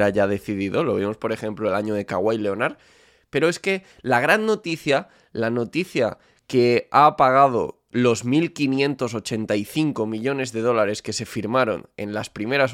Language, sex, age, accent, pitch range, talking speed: Spanish, male, 20-39, Spanish, 105-125 Hz, 155 wpm